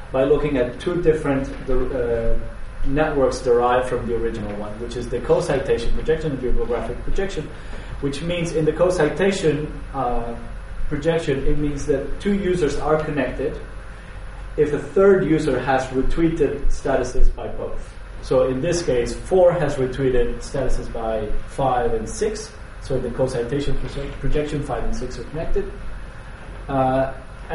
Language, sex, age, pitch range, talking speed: English, male, 30-49, 115-150 Hz, 145 wpm